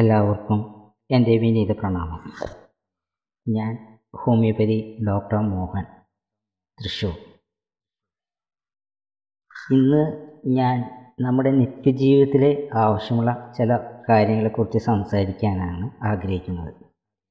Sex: female